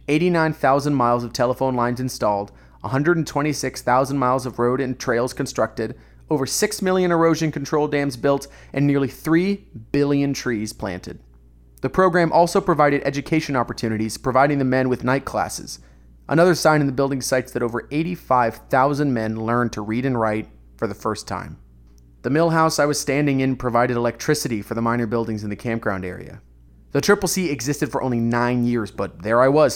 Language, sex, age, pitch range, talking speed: English, male, 30-49, 110-145 Hz, 170 wpm